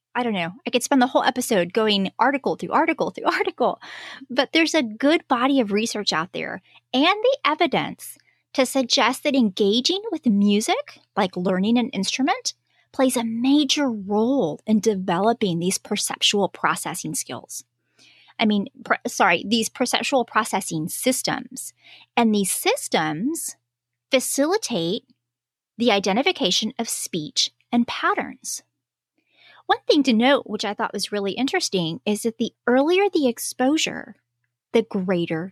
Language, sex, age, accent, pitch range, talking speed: English, female, 30-49, American, 195-275 Hz, 140 wpm